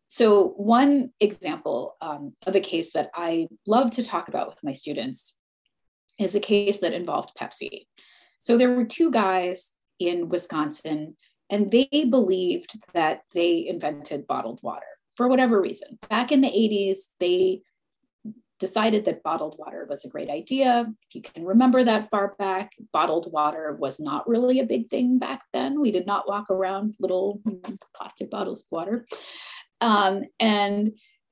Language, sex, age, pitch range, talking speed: English, female, 30-49, 175-250 Hz, 155 wpm